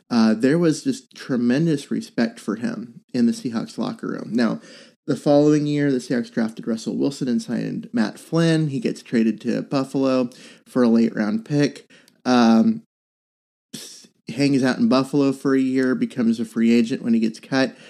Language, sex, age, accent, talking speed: English, male, 30-49, American, 175 wpm